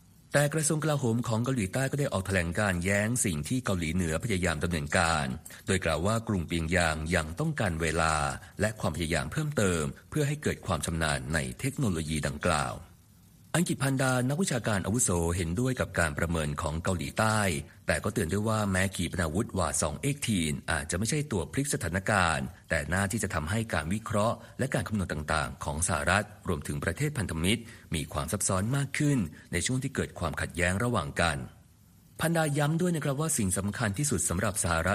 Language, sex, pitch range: Thai, male, 85-115 Hz